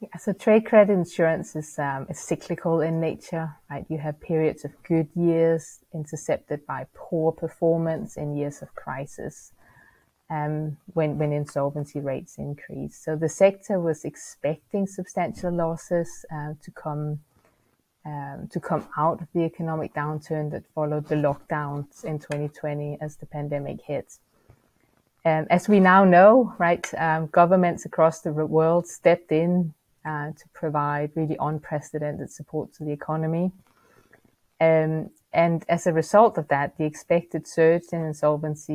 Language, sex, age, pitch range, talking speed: English, female, 30-49, 145-165 Hz, 145 wpm